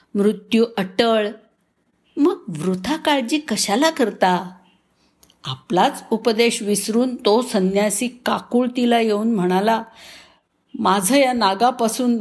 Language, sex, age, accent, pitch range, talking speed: Marathi, female, 50-69, native, 185-240 Hz, 90 wpm